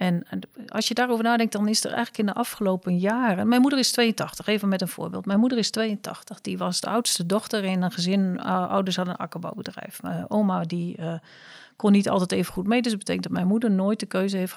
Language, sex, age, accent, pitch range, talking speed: Dutch, female, 40-59, Dutch, 185-225 Hz, 240 wpm